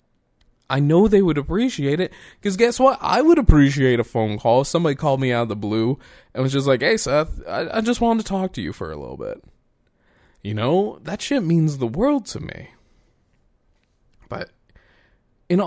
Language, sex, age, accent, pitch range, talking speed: English, male, 20-39, American, 125-180 Hz, 200 wpm